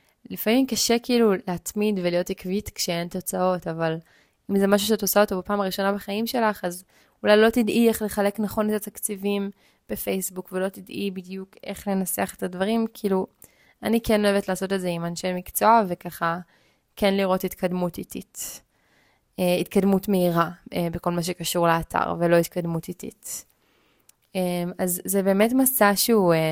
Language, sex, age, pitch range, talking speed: Hebrew, female, 20-39, 175-210 Hz, 150 wpm